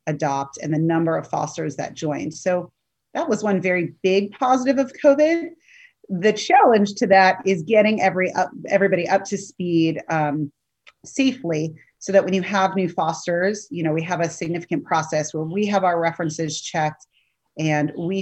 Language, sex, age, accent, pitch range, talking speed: English, female, 30-49, American, 155-195 Hz, 175 wpm